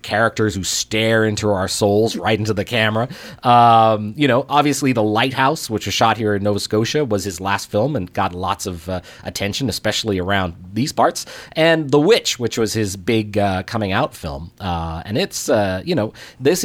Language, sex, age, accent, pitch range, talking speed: English, male, 30-49, American, 100-125 Hz, 200 wpm